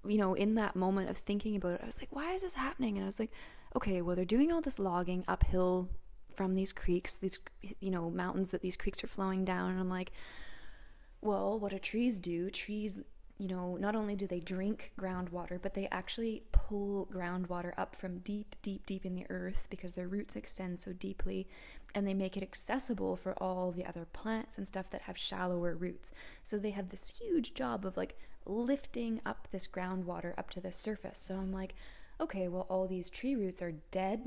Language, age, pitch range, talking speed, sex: English, 20-39, 185-215 Hz, 210 wpm, female